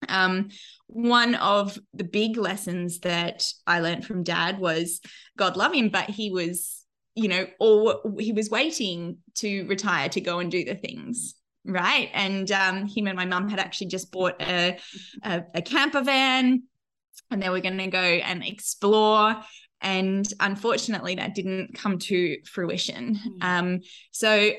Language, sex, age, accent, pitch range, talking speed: English, female, 20-39, Australian, 185-220 Hz, 155 wpm